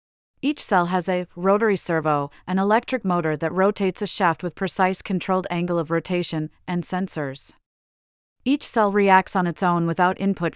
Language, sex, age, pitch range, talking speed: English, female, 30-49, 165-200 Hz, 165 wpm